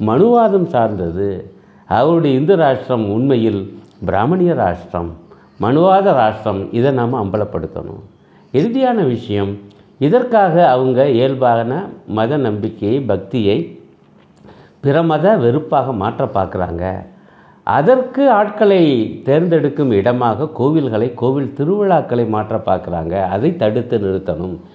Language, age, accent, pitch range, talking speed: Tamil, 60-79, native, 95-135 Hz, 90 wpm